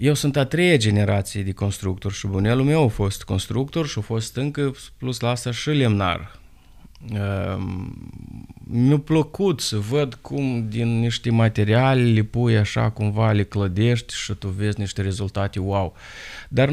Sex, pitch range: male, 105-130 Hz